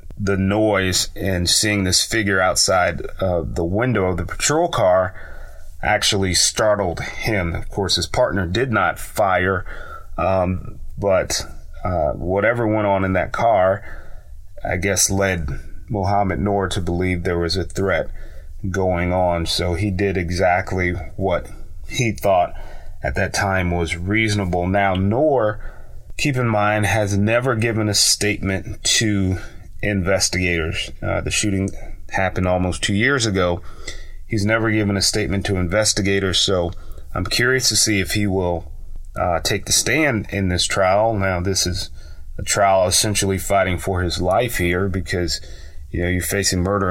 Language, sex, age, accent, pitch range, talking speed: English, male, 30-49, American, 85-100 Hz, 150 wpm